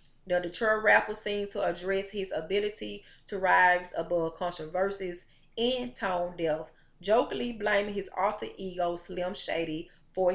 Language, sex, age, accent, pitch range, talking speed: English, female, 30-49, American, 175-210 Hz, 130 wpm